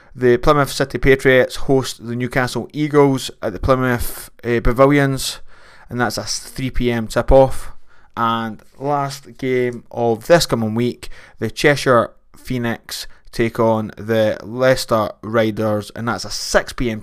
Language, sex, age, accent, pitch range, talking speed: English, male, 20-39, British, 110-130 Hz, 130 wpm